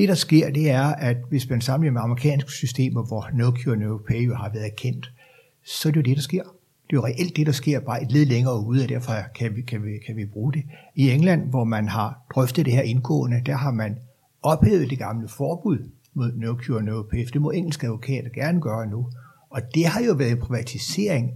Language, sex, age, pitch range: Danish, male, 60-79, 120-150 Hz